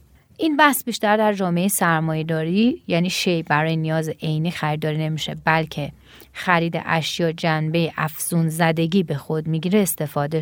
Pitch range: 160-215 Hz